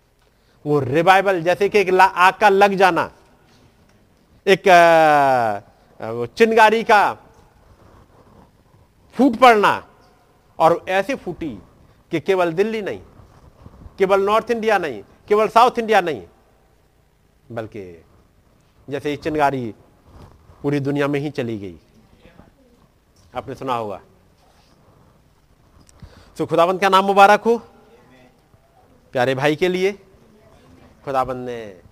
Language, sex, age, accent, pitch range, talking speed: Hindi, male, 50-69, native, 135-200 Hz, 110 wpm